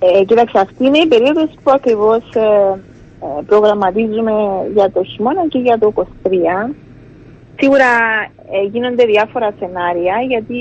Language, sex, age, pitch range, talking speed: Greek, female, 30-49, 185-255 Hz, 130 wpm